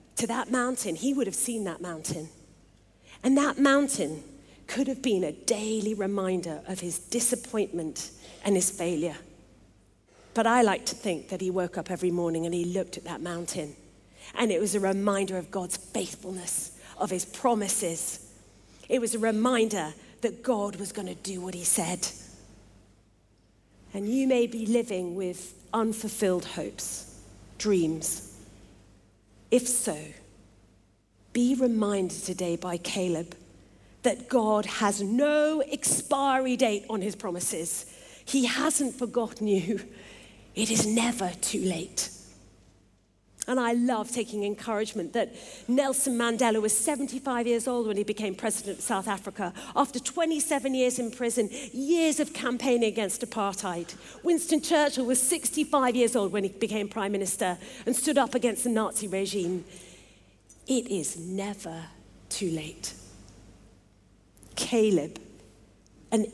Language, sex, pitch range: English, female, 160-235 Hz